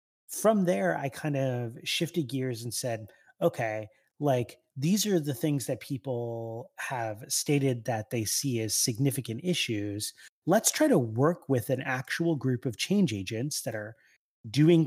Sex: male